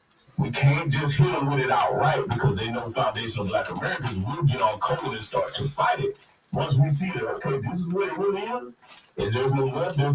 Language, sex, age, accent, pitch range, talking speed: English, male, 30-49, American, 125-155 Hz, 255 wpm